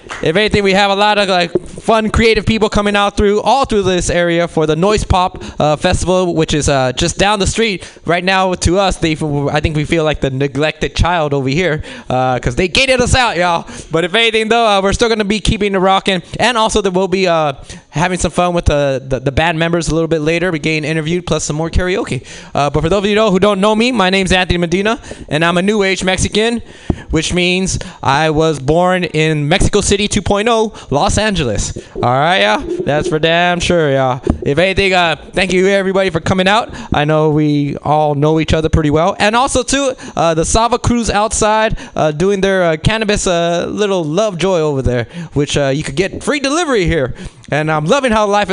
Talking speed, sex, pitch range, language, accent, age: 225 wpm, male, 155-205 Hz, English, American, 20-39